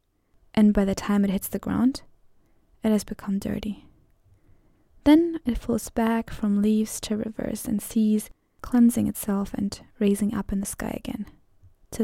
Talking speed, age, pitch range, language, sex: 160 wpm, 10-29, 200-235 Hz, English, female